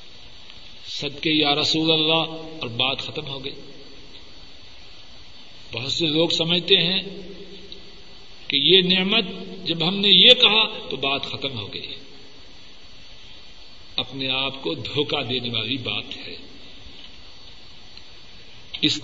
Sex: male